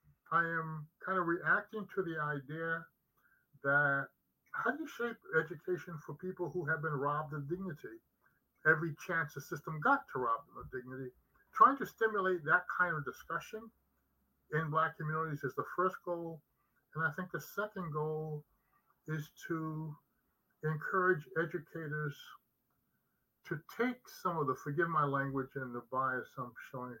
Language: English